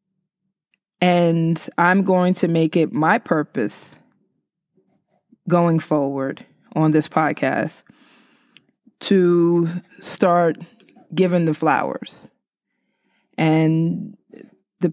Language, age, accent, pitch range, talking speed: English, 20-39, American, 160-195 Hz, 80 wpm